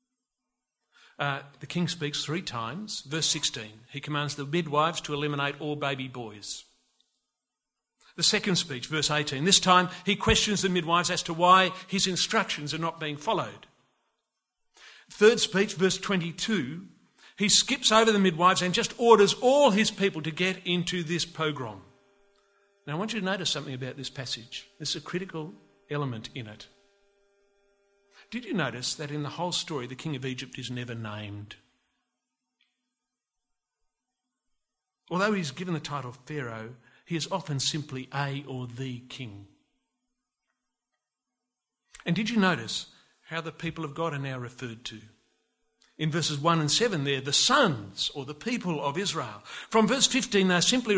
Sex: male